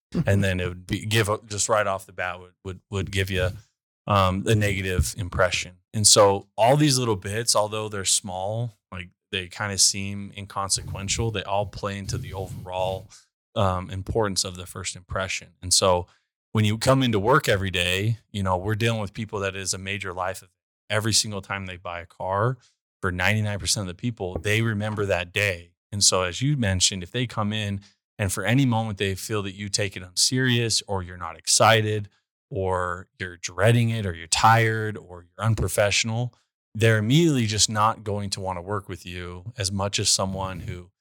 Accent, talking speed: American, 200 wpm